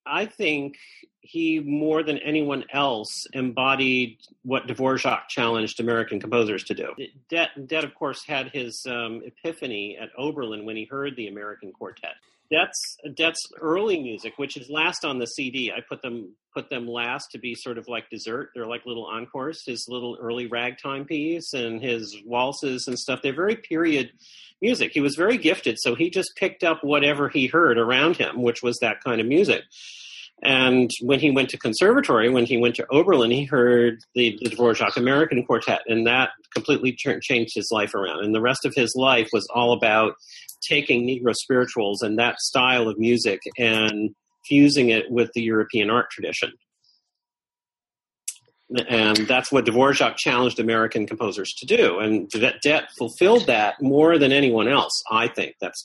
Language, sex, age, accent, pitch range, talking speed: English, male, 40-59, American, 115-145 Hz, 170 wpm